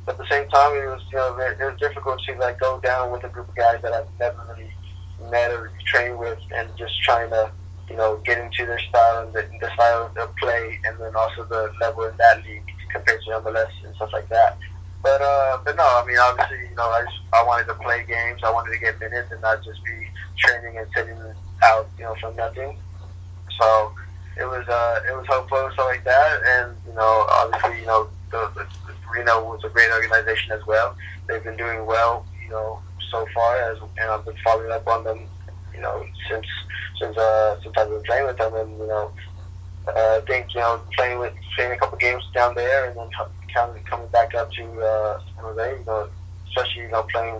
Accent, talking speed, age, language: American, 235 wpm, 20-39, English